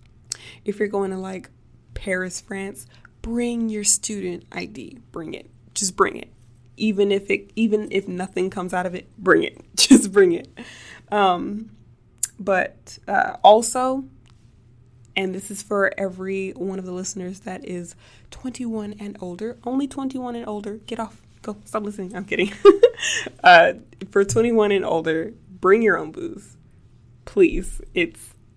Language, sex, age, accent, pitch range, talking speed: English, female, 20-39, American, 125-210 Hz, 150 wpm